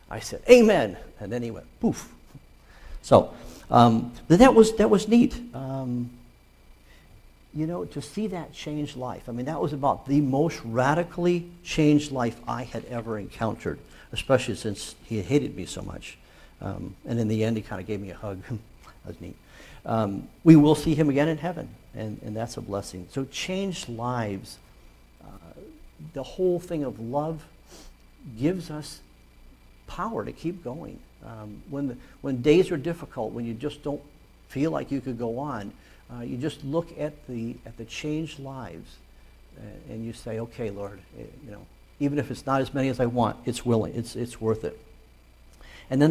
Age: 60-79